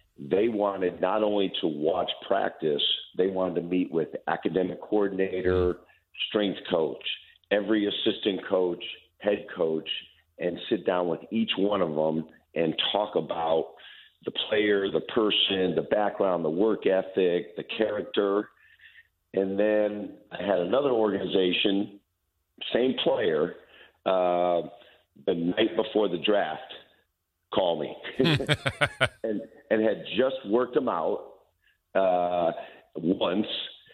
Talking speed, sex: 120 wpm, male